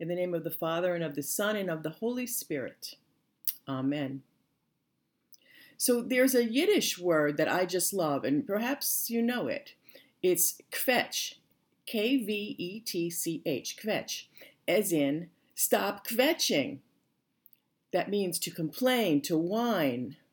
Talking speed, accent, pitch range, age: 130 wpm, American, 165-240 Hz, 50-69